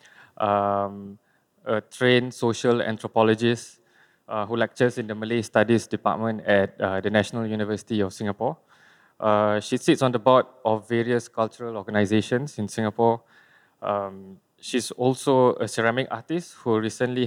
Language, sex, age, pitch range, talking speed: English, male, 20-39, 110-125 Hz, 140 wpm